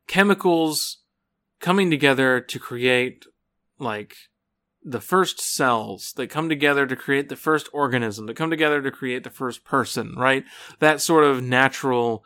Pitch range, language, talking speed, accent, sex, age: 125-160 Hz, English, 145 wpm, American, male, 30-49